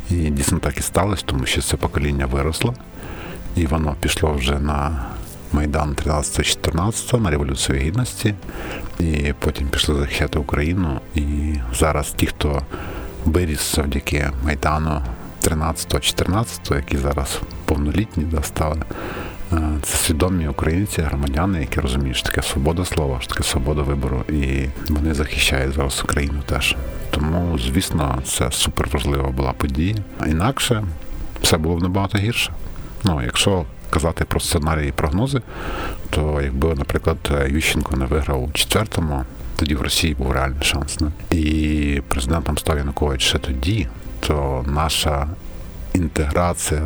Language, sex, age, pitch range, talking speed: Ukrainian, male, 50-69, 70-85 Hz, 130 wpm